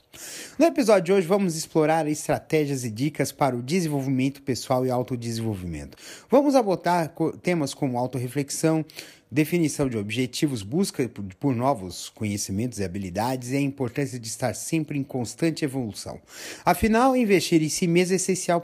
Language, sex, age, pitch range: Portuguese, male, 30-49, 140-210 Hz